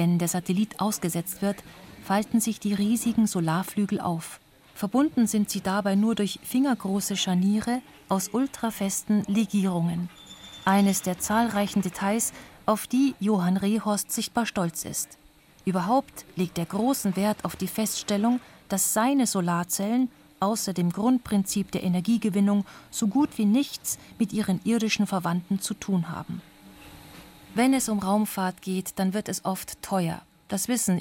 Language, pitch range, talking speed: German, 185-225 Hz, 140 wpm